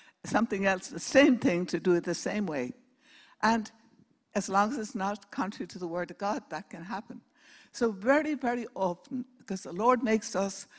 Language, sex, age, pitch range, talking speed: English, female, 60-79, 180-250 Hz, 195 wpm